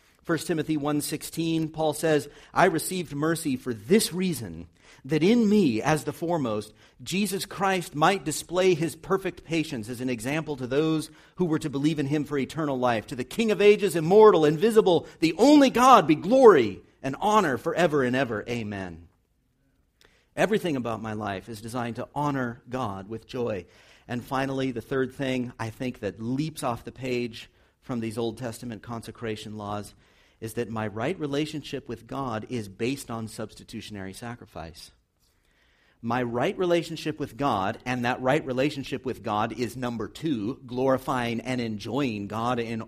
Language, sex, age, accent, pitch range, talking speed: English, male, 50-69, American, 115-160 Hz, 165 wpm